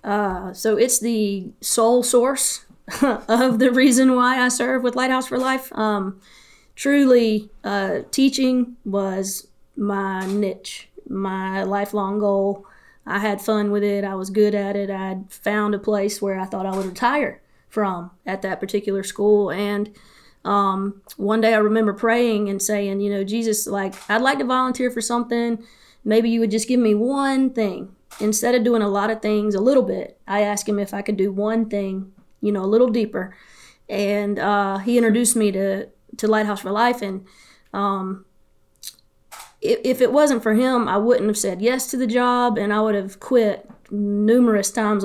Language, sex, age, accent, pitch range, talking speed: English, female, 20-39, American, 200-240 Hz, 180 wpm